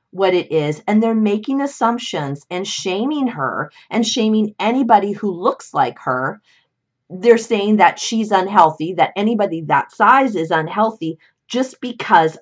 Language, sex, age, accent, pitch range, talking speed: English, female, 30-49, American, 160-230 Hz, 145 wpm